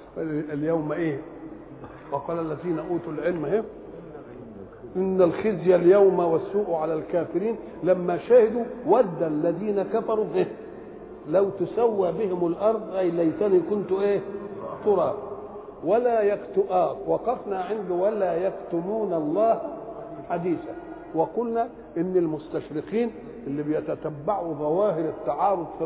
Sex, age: male, 50-69